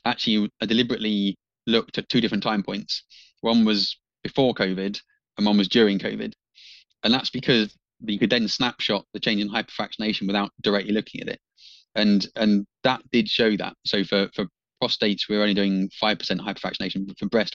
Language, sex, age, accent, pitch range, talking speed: English, male, 20-39, British, 100-115 Hz, 180 wpm